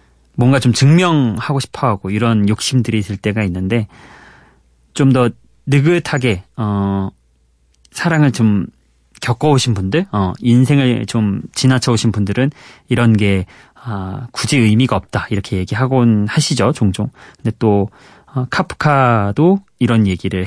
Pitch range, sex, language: 100-135 Hz, male, Korean